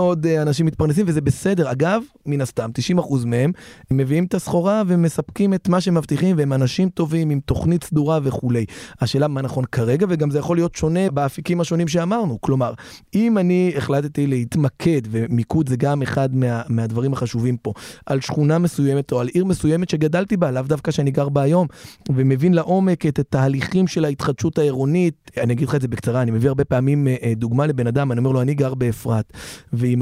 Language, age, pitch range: Hebrew, 30-49, 125-170 Hz